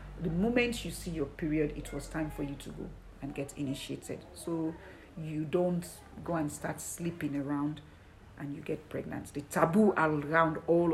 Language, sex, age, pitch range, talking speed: English, female, 50-69, 145-220 Hz, 175 wpm